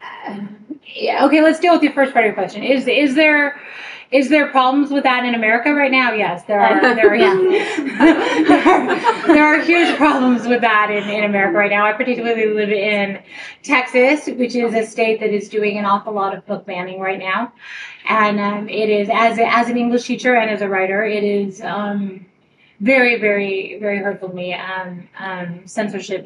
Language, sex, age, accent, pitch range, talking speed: English, female, 20-39, American, 195-250 Hz, 205 wpm